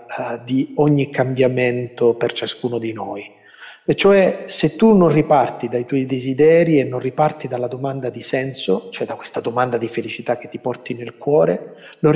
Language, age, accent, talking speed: Italian, 40-59, native, 175 wpm